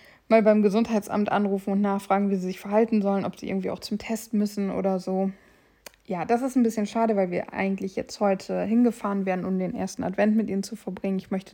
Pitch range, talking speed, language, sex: 195-230 Hz, 225 wpm, German, female